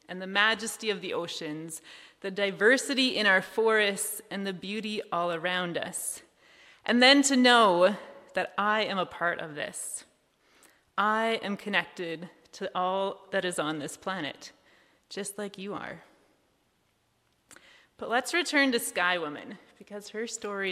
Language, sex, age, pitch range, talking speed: English, female, 30-49, 195-250 Hz, 150 wpm